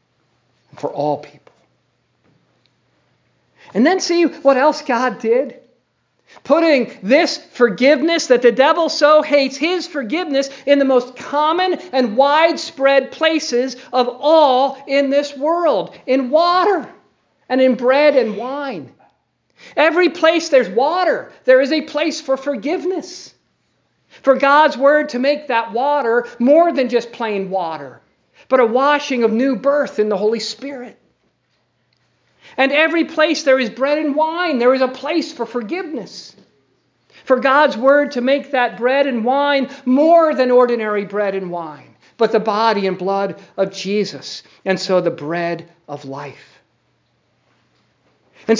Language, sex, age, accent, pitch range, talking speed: English, male, 50-69, American, 245-300 Hz, 140 wpm